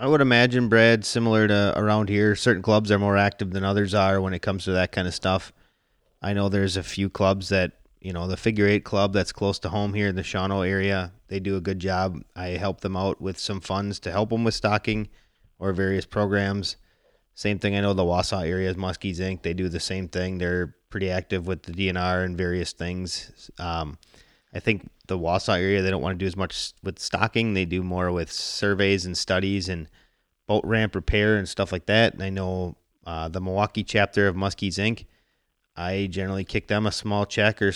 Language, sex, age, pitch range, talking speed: English, male, 30-49, 90-105 Hz, 220 wpm